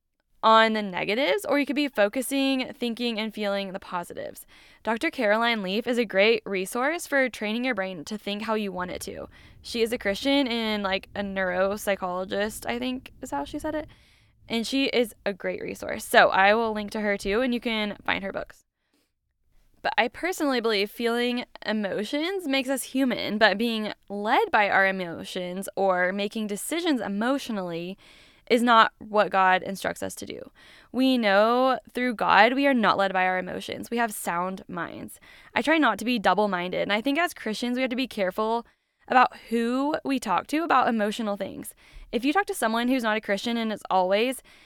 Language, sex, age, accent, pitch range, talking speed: English, female, 10-29, American, 200-255 Hz, 190 wpm